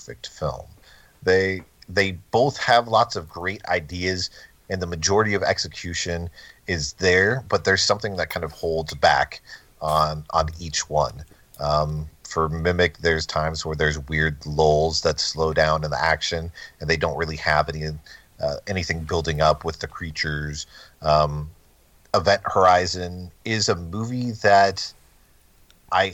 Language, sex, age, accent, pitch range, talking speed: English, male, 40-59, American, 75-90 Hz, 145 wpm